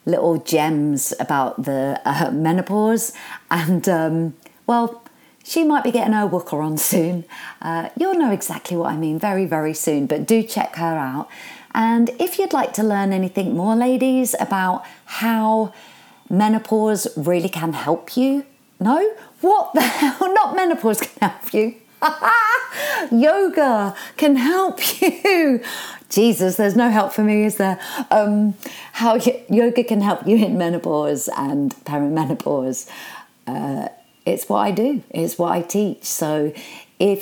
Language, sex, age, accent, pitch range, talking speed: English, female, 40-59, British, 170-260 Hz, 145 wpm